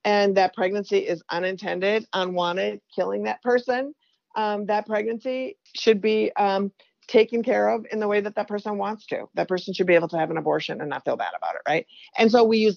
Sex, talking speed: female, 215 wpm